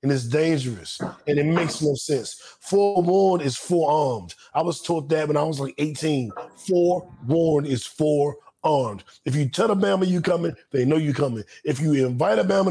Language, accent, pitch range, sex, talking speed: English, American, 145-200 Hz, male, 185 wpm